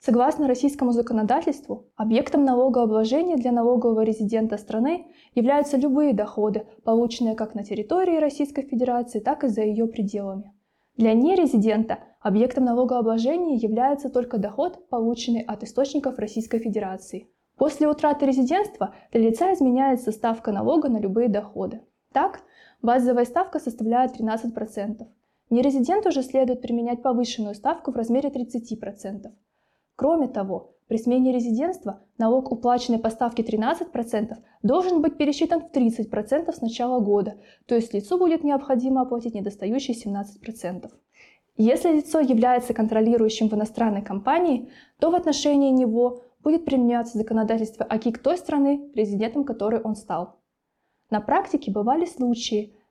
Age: 20-39